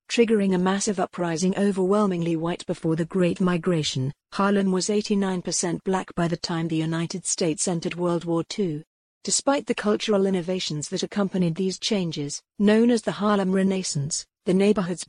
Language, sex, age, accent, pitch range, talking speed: English, female, 50-69, British, 170-200 Hz, 155 wpm